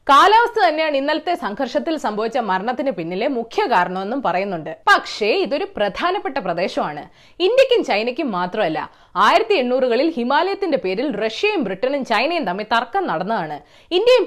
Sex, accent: female, native